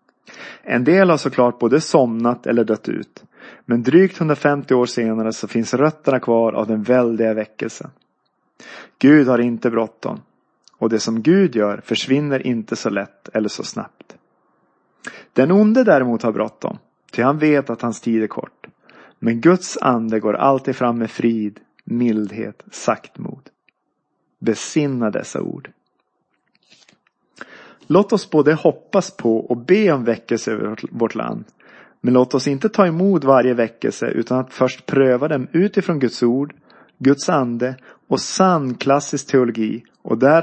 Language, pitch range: Swedish, 115-155 Hz